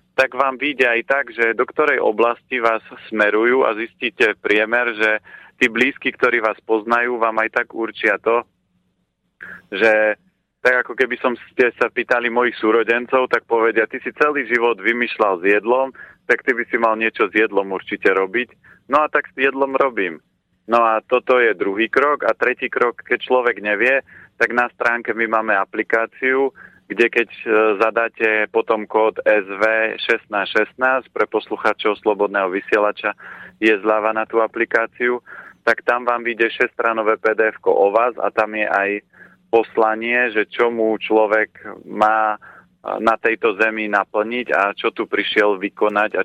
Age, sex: 40-59, male